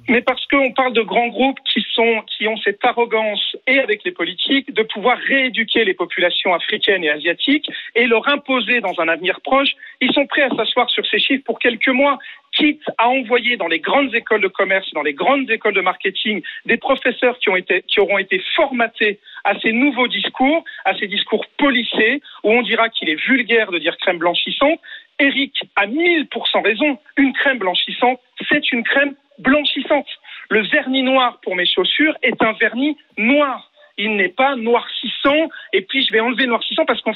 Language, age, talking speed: French, 40-59, 195 wpm